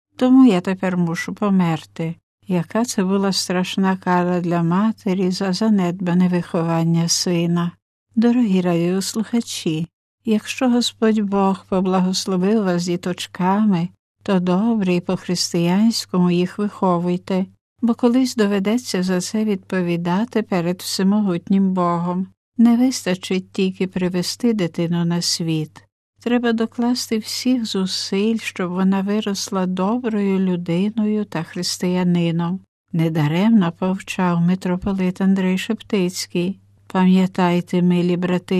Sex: female